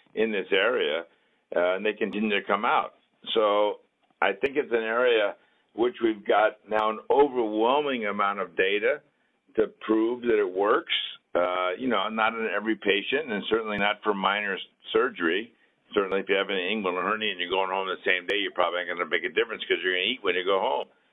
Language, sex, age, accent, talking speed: English, male, 60-79, American, 210 wpm